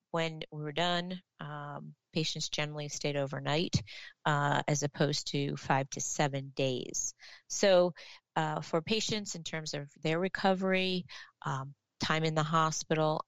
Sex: female